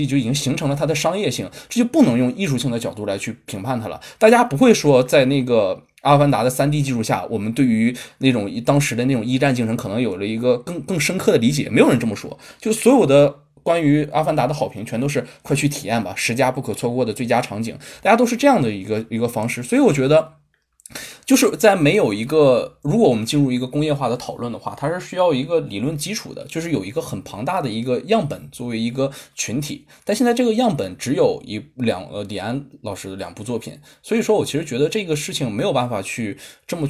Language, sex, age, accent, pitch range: Chinese, male, 20-39, native, 110-145 Hz